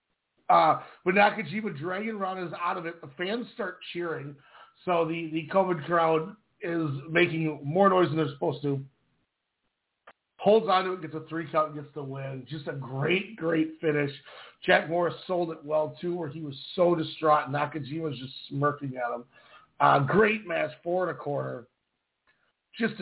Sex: male